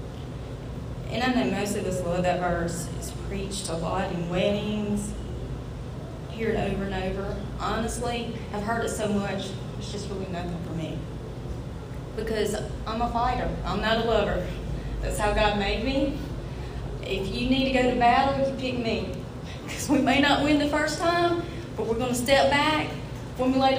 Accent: American